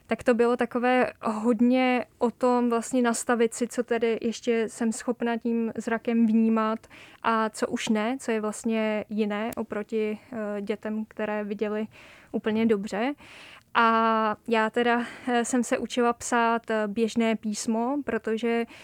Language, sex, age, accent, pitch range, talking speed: Czech, female, 20-39, native, 220-240 Hz, 135 wpm